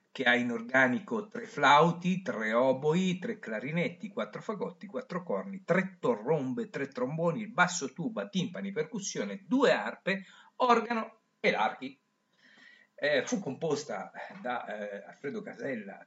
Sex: male